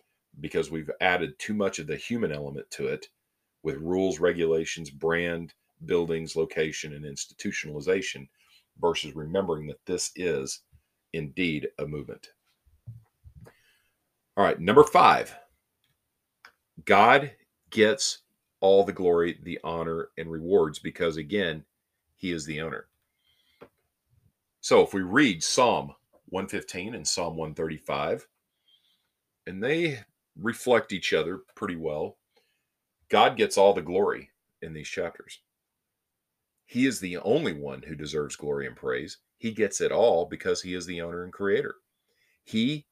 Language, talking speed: English, 130 wpm